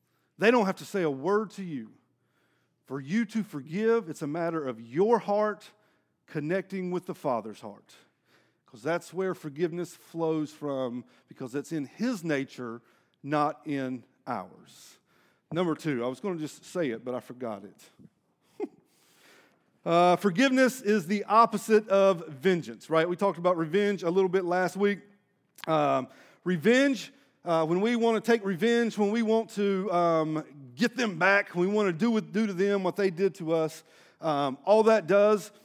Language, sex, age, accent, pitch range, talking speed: English, male, 40-59, American, 155-205 Hz, 175 wpm